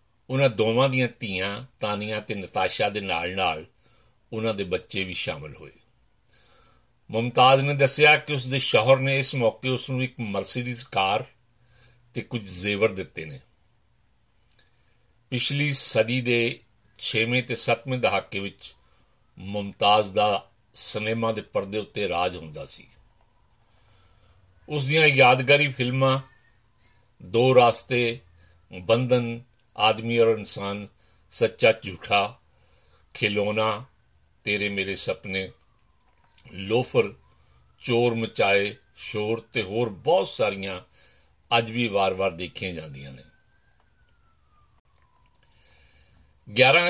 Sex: male